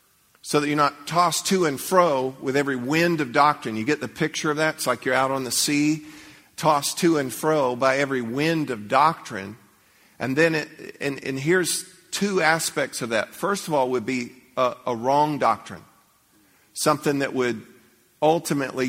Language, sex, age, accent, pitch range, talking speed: English, male, 50-69, American, 115-140 Hz, 185 wpm